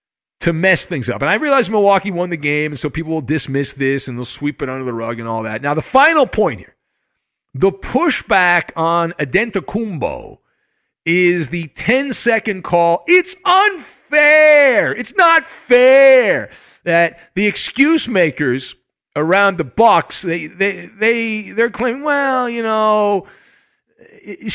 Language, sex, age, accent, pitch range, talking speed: English, male, 50-69, American, 165-265 Hz, 150 wpm